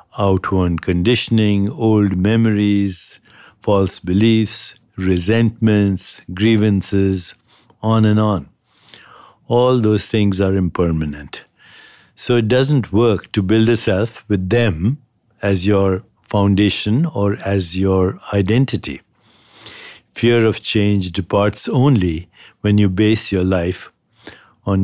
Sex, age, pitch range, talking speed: male, 60-79, 95-115 Hz, 105 wpm